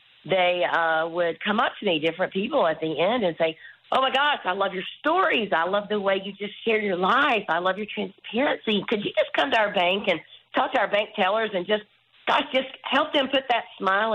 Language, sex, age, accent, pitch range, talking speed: English, female, 40-59, American, 165-215 Hz, 240 wpm